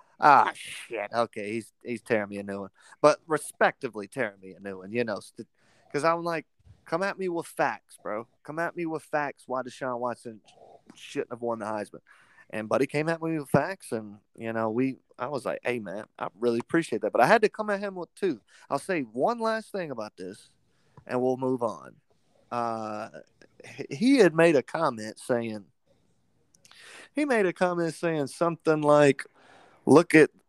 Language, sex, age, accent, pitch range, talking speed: English, male, 30-49, American, 120-200 Hz, 195 wpm